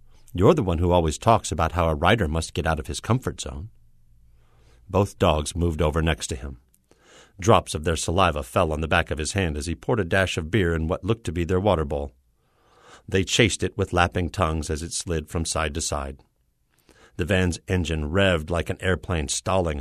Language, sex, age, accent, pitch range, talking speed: English, male, 50-69, American, 75-100 Hz, 215 wpm